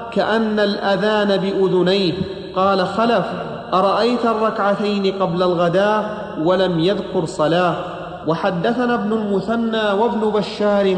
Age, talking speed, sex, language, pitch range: 40-59, 95 wpm, male, Arabic, 195-220 Hz